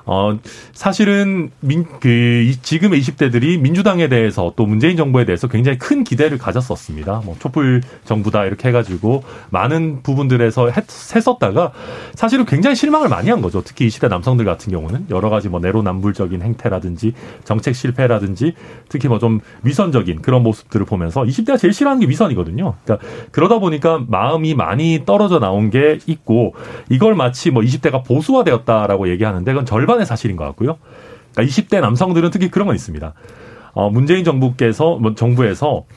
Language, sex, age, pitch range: Korean, male, 30-49, 110-170 Hz